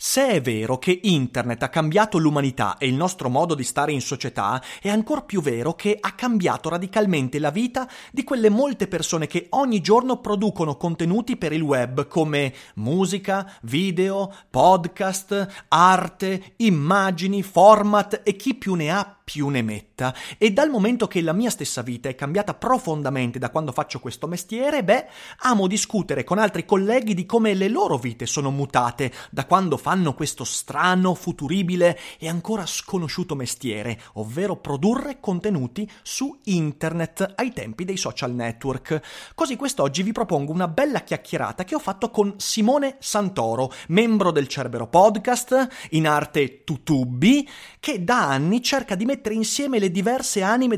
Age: 30-49